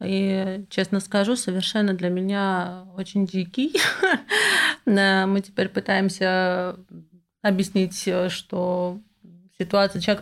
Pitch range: 175-195 Hz